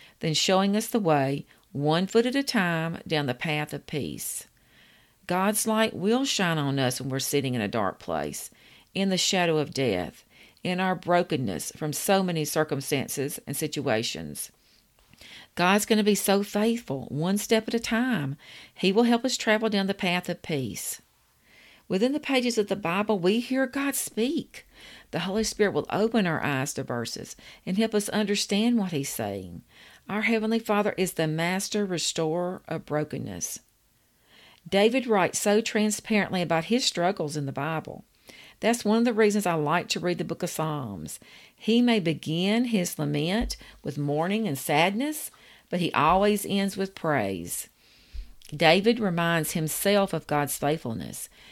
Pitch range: 150-215 Hz